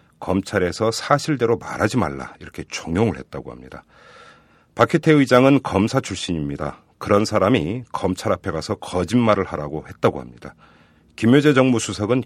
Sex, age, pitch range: male, 40-59, 90-125 Hz